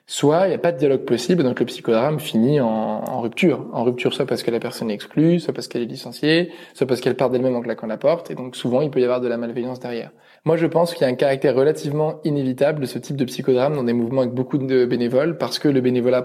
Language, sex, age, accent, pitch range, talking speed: French, male, 20-39, French, 125-150 Hz, 275 wpm